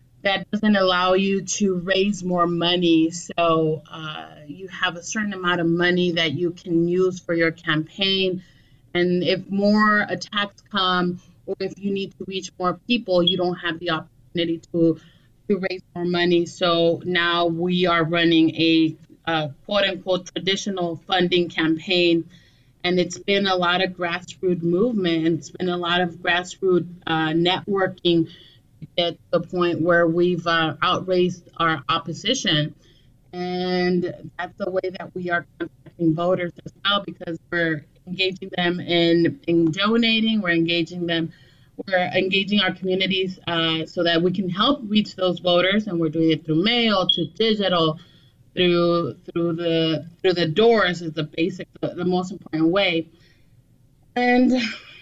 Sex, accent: female, American